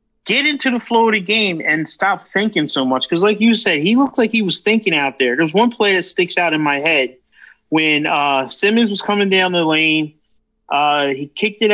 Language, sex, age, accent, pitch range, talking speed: English, male, 30-49, American, 155-195 Hz, 230 wpm